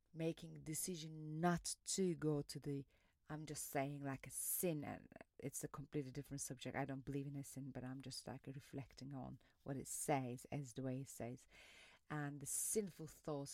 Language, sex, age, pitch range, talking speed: English, female, 30-49, 135-155 Hz, 190 wpm